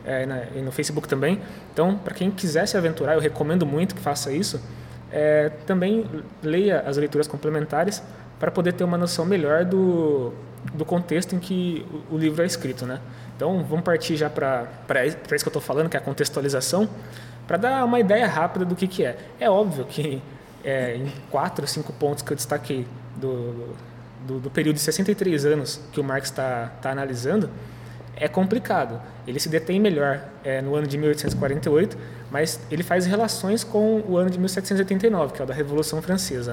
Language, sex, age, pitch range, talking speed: Portuguese, male, 20-39, 135-180 Hz, 185 wpm